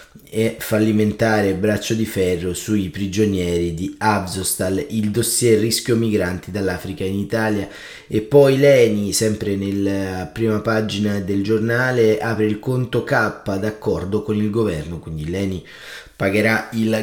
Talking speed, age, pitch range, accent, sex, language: 130 wpm, 20-39, 100-115 Hz, native, male, Italian